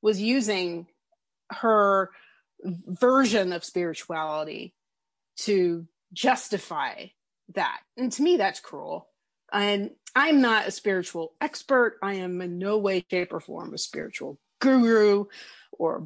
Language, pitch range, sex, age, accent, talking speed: English, 175-245 Hz, female, 30-49, American, 120 wpm